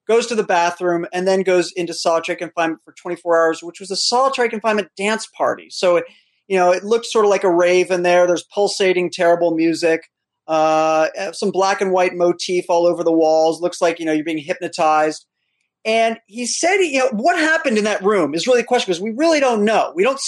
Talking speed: 220 wpm